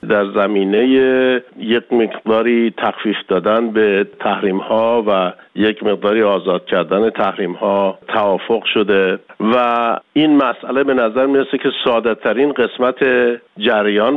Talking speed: 110 wpm